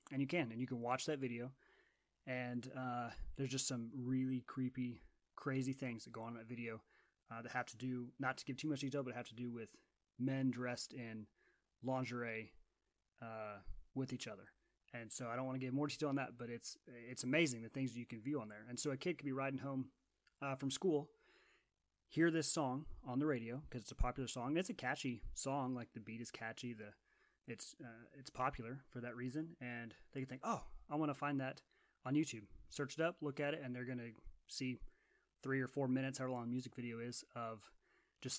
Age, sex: 30-49, male